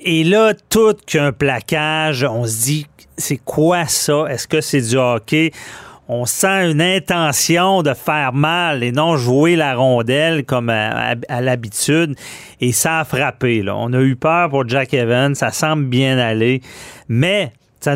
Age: 40-59